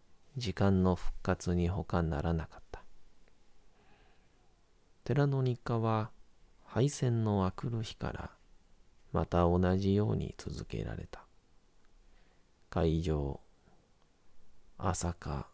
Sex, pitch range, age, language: male, 80-105 Hz, 40-59, Japanese